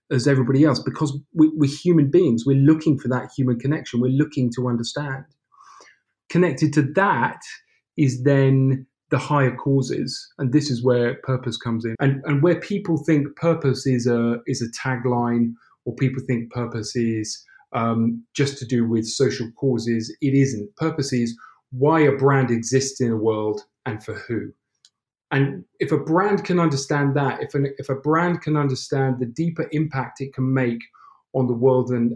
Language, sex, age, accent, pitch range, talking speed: English, male, 30-49, British, 120-145 Hz, 170 wpm